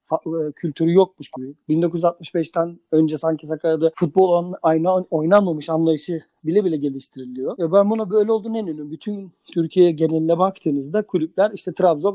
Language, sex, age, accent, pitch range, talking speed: Turkish, male, 50-69, native, 155-190 Hz, 150 wpm